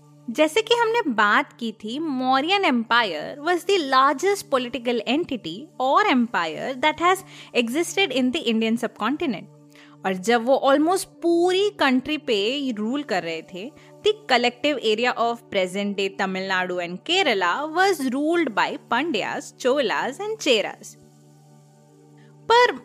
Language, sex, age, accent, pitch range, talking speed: Hindi, female, 20-39, native, 230-340 Hz, 120 wpm